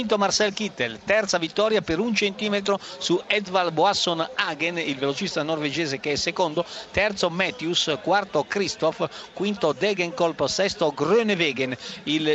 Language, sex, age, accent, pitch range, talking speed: Italian, male, 50-69, native, 145-185 Hz, 130 wpm